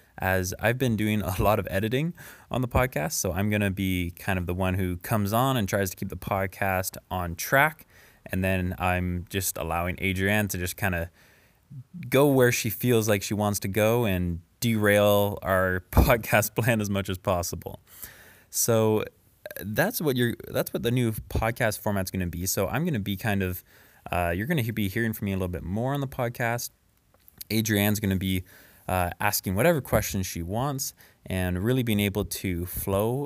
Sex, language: male, English